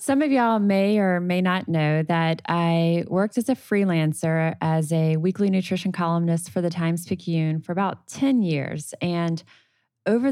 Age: 20-39